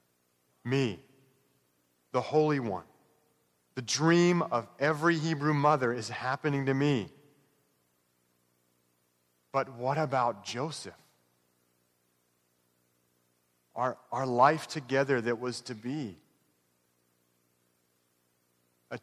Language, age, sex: English, 40-59, male